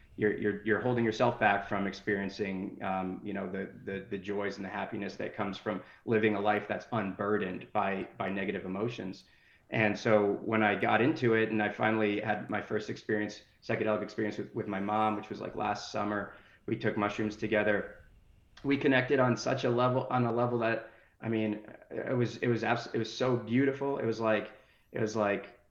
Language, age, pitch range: English, 30-49, 100-110 Hz